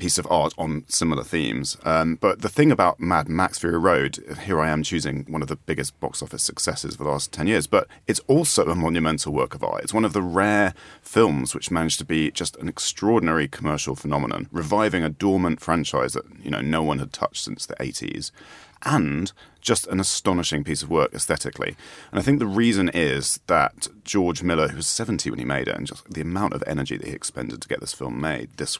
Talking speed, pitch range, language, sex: 225 wpm, 75-95 Hz, English, male